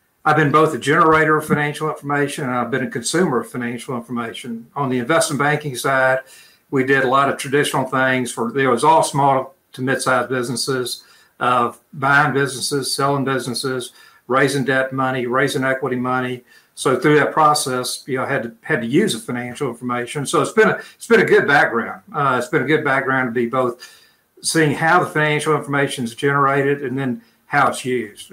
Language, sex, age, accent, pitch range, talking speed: English, male, 60-79, American, 125-145 Hz, 195 wpm